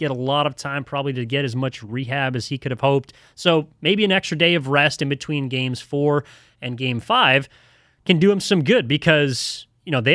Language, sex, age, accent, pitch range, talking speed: English, male, 30-49, American, 130-170 Hz, 230 wpm